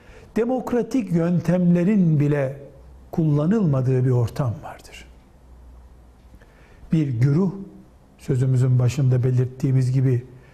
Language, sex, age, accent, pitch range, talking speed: Turkish, male, 60-79, native, 115-170 Hz, 75 wpm